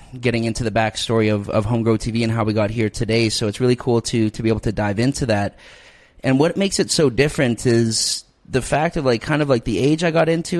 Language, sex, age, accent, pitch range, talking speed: English, male, 30-49, American, 110-140 Hz, 255 wpm